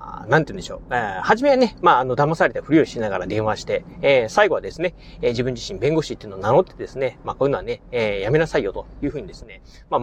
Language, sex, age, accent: Japanese, male, 40-59, native